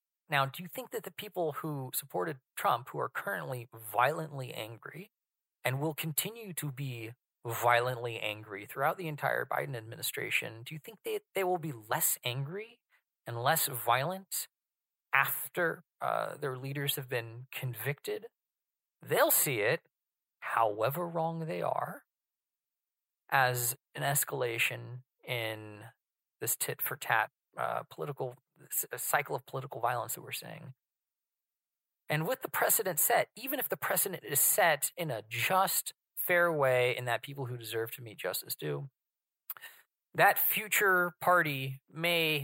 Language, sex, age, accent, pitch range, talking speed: English, male, 30-49, American, 120-165 Hz, 135 wpm